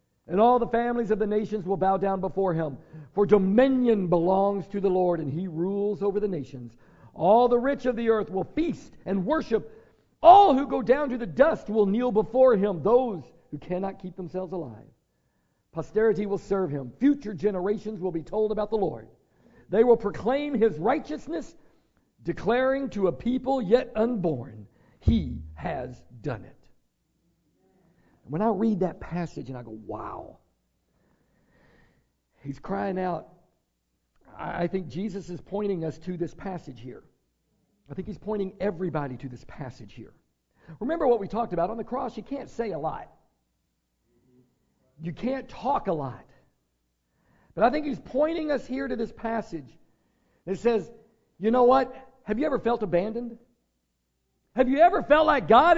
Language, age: English, 60-79